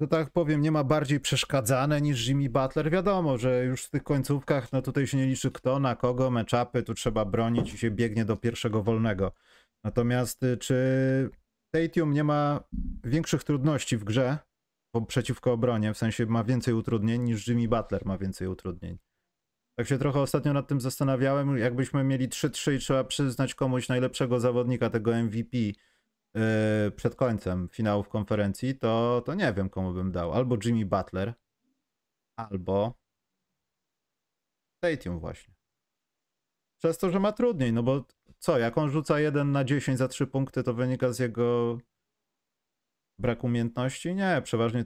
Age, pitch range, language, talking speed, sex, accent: 30-49, 105-135 Hz, Polish, 155 wpm, male, native